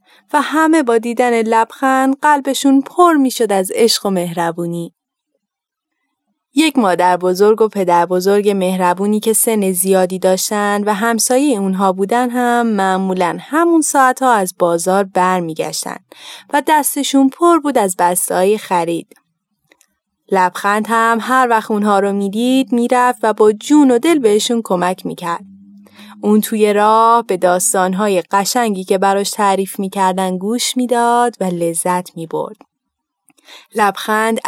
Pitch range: 190-255 Hz